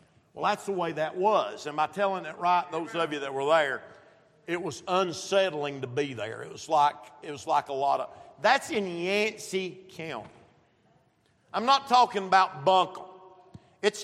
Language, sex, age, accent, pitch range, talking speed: English, male, 50-69, American, 165-215 Hz, 180 wpm